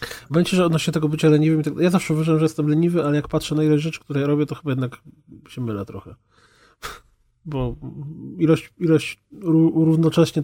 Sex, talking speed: male, 180 wpm